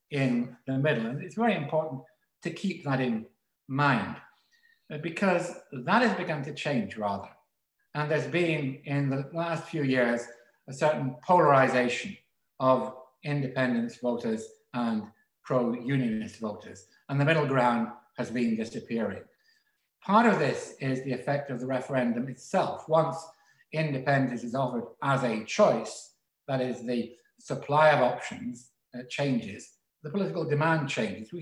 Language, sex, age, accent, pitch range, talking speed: English, male, 60-79, British, 125-165 Hz, 140 wpm